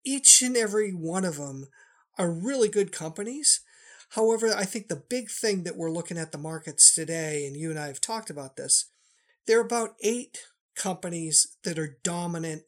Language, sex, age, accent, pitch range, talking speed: English, male, 50-69, American, 155-210 Hz, 185 wpm